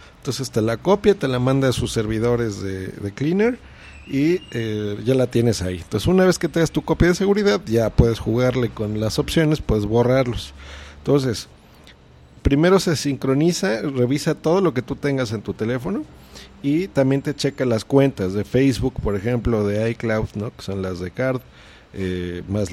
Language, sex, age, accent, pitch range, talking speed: Spanish, male, 40-59, Mexican, 105-135 Hz, 185 wpm